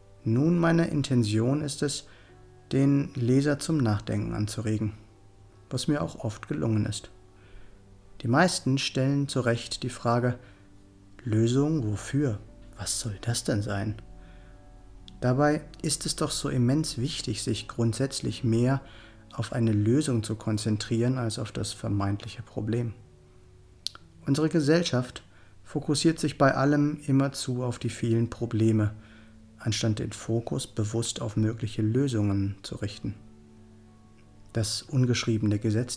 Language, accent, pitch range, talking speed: German, German, 105-135 Hz, 125 wpm